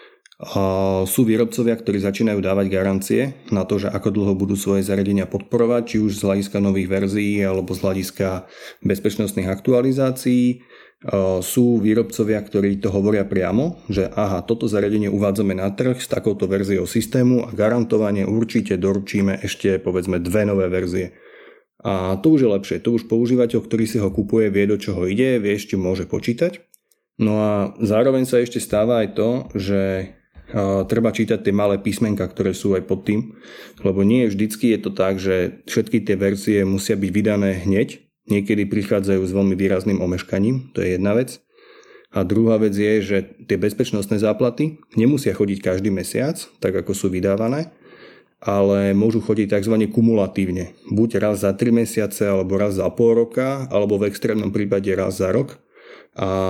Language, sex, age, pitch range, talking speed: Slovak, male, 30-49, 95-115 Hz, 165 wpm